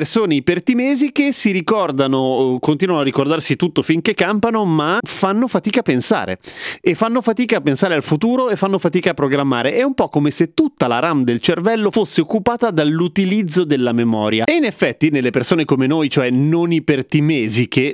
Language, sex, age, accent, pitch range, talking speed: Italian, male, 30-49, native, 130-200 Hz, 175 wpm